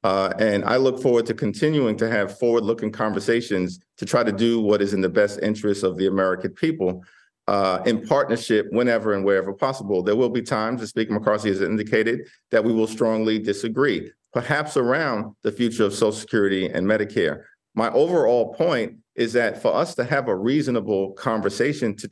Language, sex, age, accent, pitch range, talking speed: English, male, 50-69, American, 105-130 Hz, 185 wpm